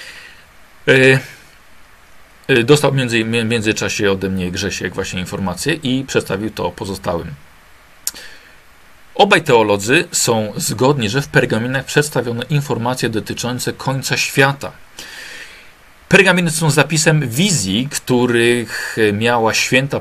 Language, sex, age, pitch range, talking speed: Polish, male, 40-59, 110-145 Hz, 95 wpm